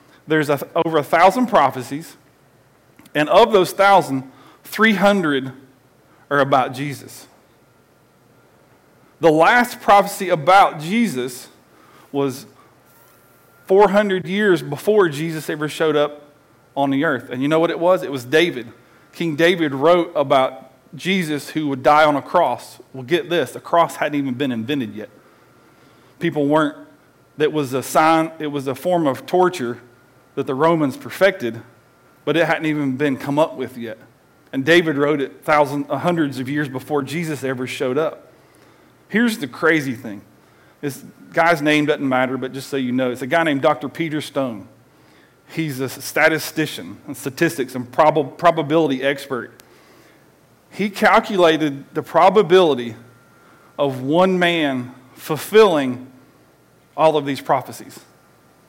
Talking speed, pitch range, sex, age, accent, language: 140 wpm, 135-170 Hz, male, 40-59, American, English